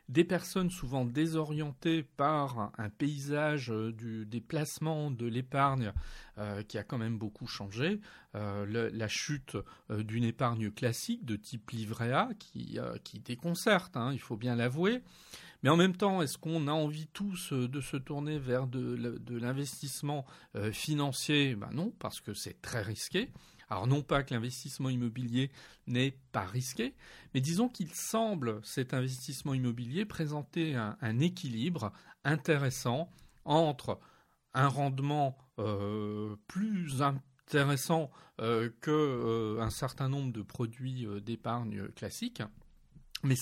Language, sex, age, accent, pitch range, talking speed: French, male, 40-59, French, 115-150 Hz, 140 wpm